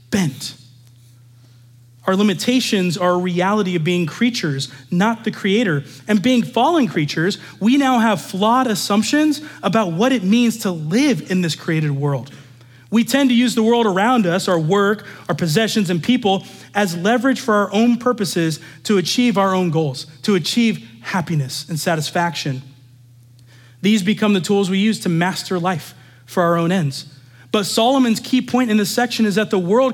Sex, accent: male, American